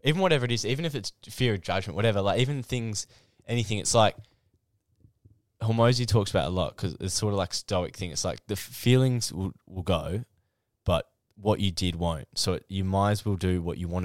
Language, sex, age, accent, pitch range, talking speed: English, male, 10-29, Australian, 95-115 Hz, 215 wpm